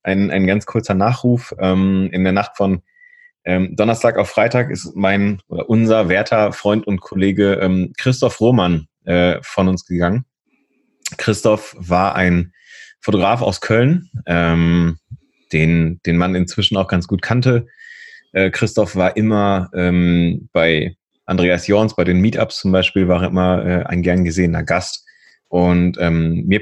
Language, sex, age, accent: German, male, 30-49, German